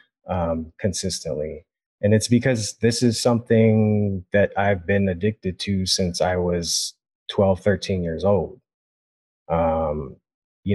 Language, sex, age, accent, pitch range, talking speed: English, male, 30-49, American, 95-115 Hz, 125 wpm